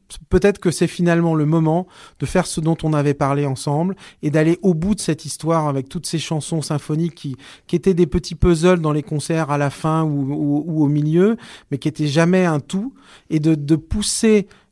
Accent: French